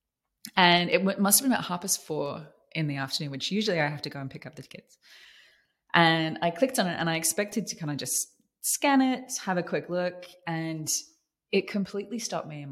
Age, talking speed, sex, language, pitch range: 20-39, 220 wpm, female, English, 145-180 Hz